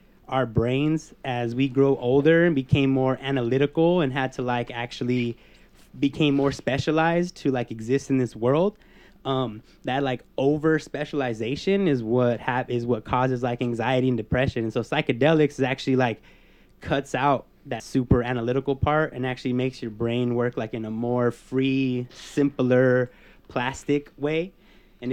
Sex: male